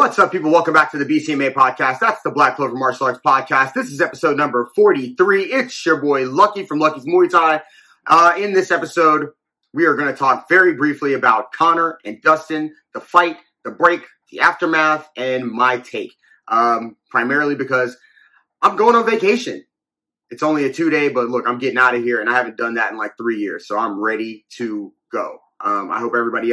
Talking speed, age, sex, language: 205 wpm, 30-49, male, English